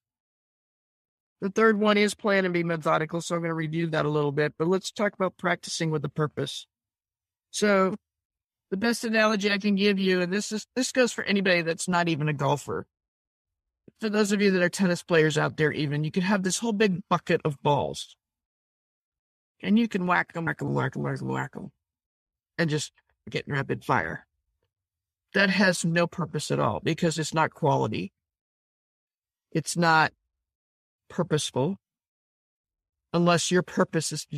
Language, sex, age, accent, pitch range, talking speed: English, male, 50-69, American, 140-180 Hz, 180 wpm